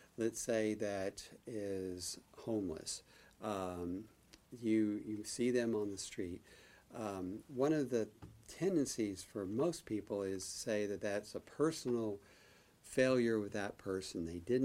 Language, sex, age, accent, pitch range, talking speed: English, male, 50-69, American, 95-115 Hz, 140 wpm